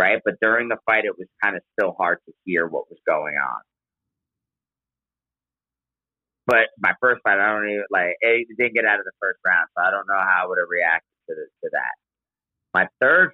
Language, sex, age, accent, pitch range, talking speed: English, male, 30-49, American, 85-105 Hz, 210 wpm